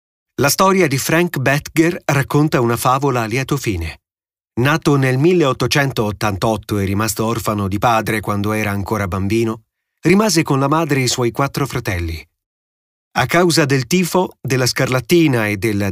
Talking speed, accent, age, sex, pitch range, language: 150 wpm, native, 30-49, male, 105-155 Hz, Italian